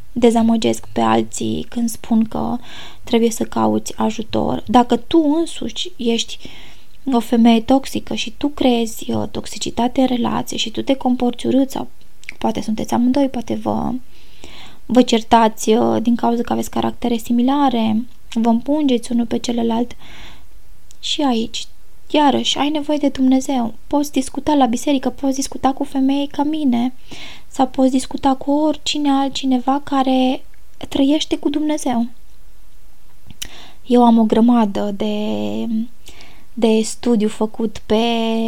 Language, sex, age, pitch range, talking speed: Romanian, female, 20-39, 225-260 Hz, 130 wpm